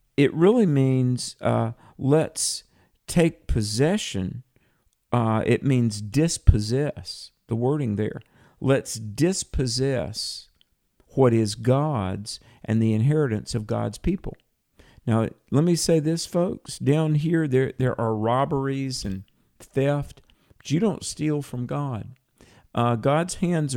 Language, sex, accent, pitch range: English, male, American, 110-140 Hz